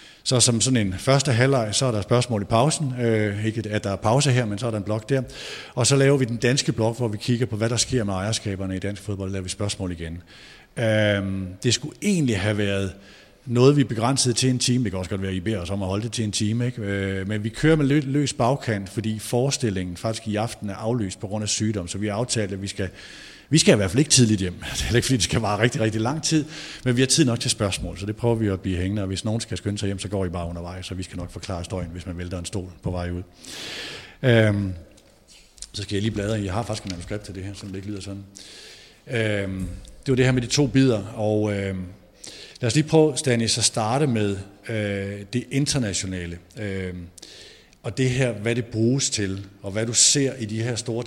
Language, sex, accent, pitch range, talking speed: Danish, male, native, 100-125 Hz, 260 wpm